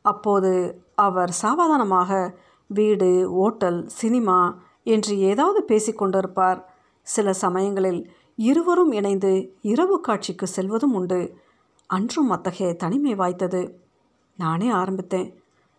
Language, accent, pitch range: Tamil, native, 185-225 Hz